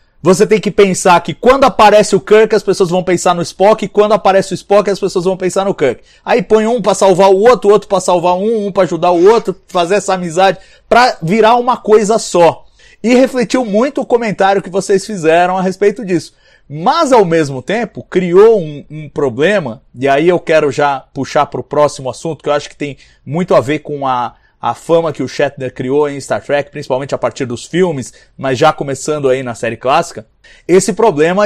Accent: Brazilian